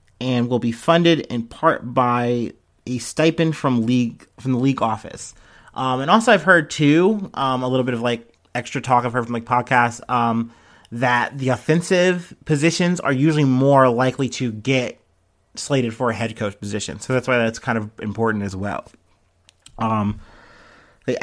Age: 30-49